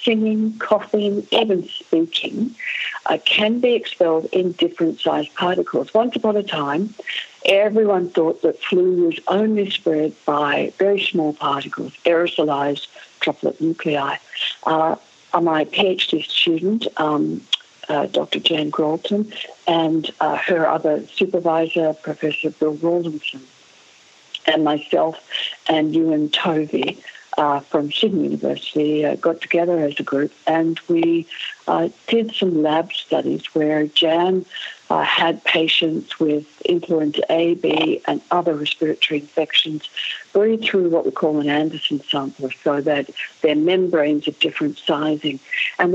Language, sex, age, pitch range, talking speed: English, female, 60-79, 155-190 Hz, 130 wpm